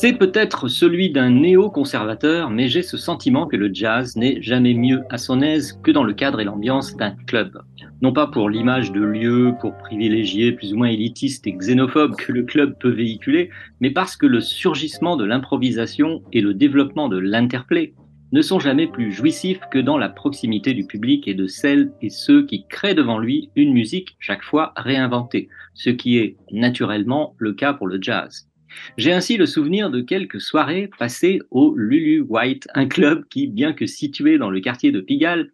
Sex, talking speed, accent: male, 190 wpm, French